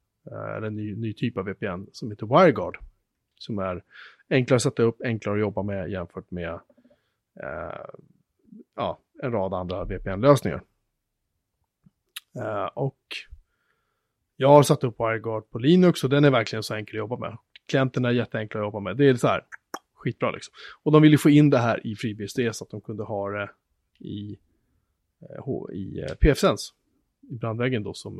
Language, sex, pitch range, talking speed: Swedish, male, 105-140 Hz, 170 wpm